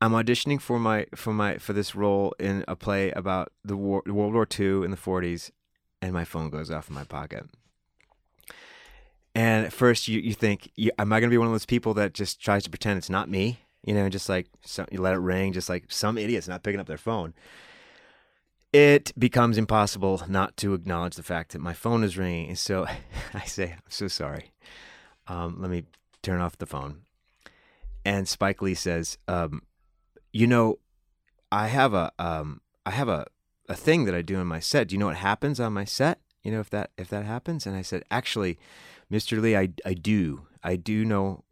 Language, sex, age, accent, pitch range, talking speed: English, male, 30-49, American, 90-110 Hz, 210 wpm